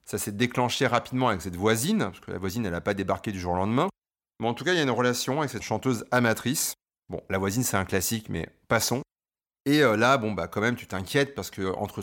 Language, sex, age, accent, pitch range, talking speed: French, male, 30-49, French, 105-135 Hz, 255 wpm